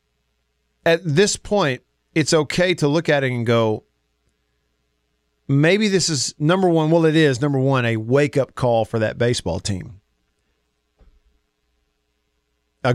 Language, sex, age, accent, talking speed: English, male, 40-59, American, 130 wpm